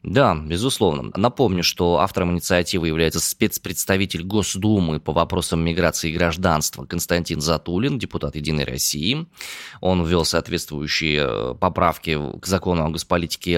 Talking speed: 120 wpm